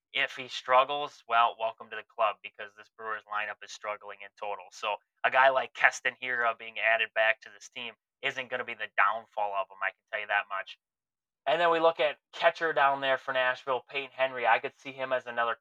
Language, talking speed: English, 230 wpm